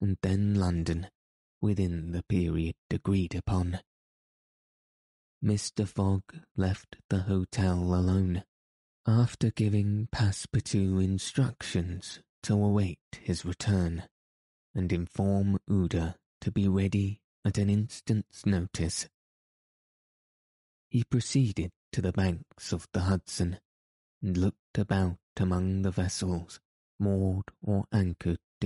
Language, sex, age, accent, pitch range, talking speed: English, male, 20-39, British, 85-100 Hz, 105 wpm